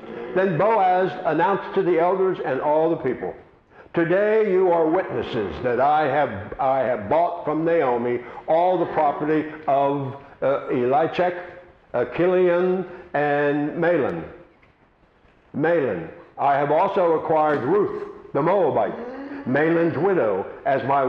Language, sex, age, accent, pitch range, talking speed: English, male, 60-79, American, 150-185 Hz, 120 wpm